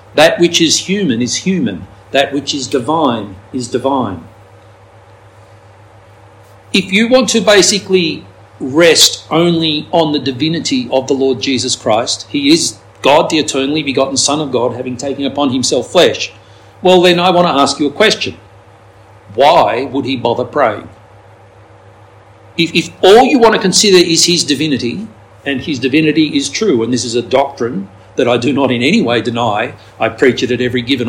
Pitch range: 100-165 Hz